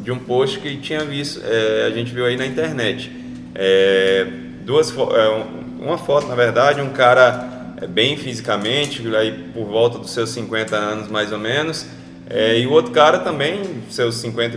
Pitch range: 115-160 Hz